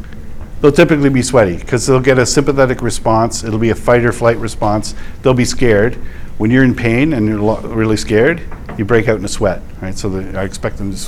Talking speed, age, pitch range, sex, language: 220 wpm, 50-69, 100-120 Hz, male, English